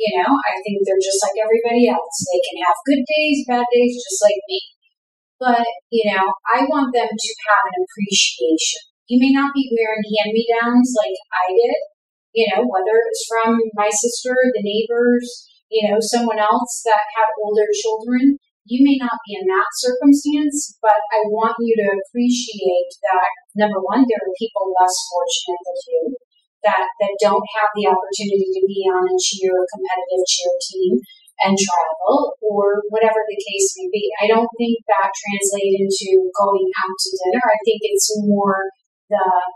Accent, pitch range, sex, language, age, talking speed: American, 195-240 Hz, female, English, 30-49, 175 wpm